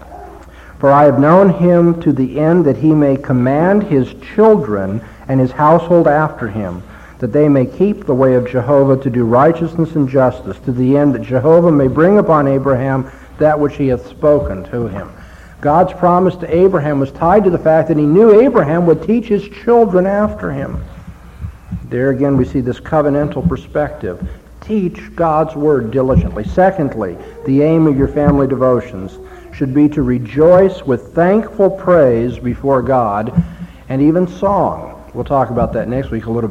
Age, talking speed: 60-79, 175 wpm